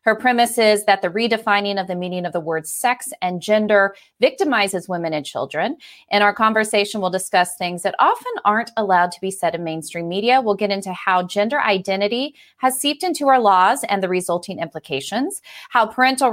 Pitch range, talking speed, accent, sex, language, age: 180-225 Hz, 190 wpm, American, female, English, 30-49